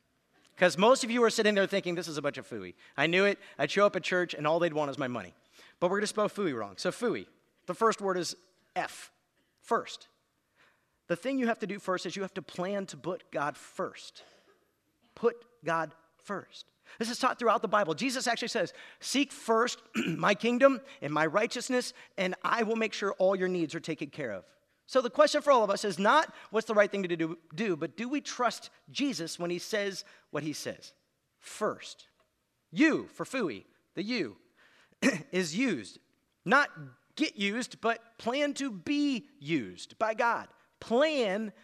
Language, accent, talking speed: English, American, 195 wpm